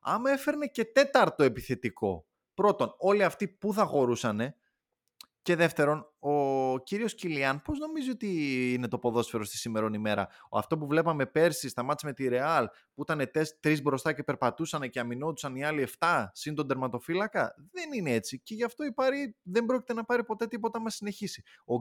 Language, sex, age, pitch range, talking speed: Greek, male, 20-39, 125-200 Hz, 175 wpm